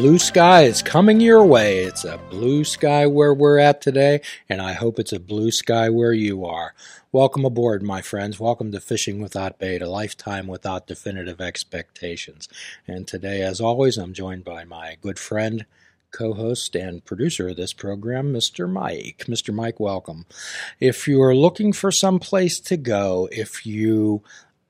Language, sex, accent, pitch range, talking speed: English, male, American, 100-140 Hz, 170 wpm